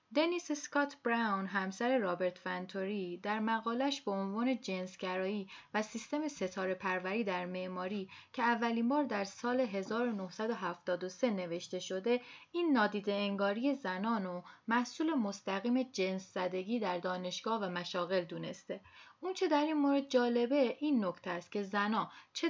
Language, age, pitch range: Persian, 30-49, 190-250 Hz